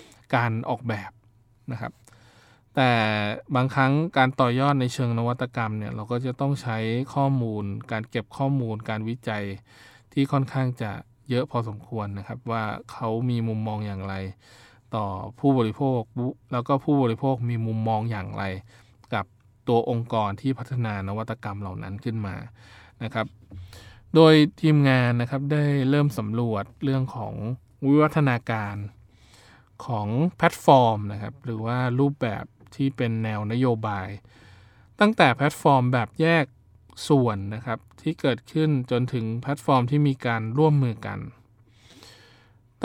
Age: 20-39